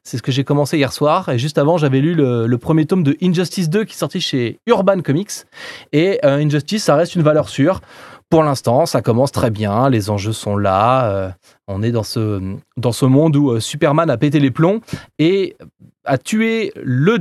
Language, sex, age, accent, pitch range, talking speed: French, male, 20-39, French, 135-195 Hz, 215 wpm